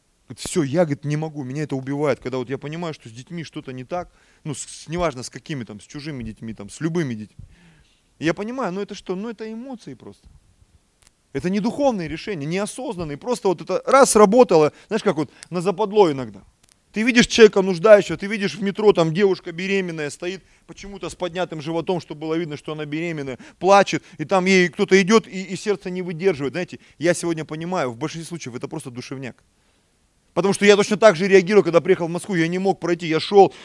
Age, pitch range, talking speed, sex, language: 20-39, 130-185 Hz, 210 wpm, male, Russian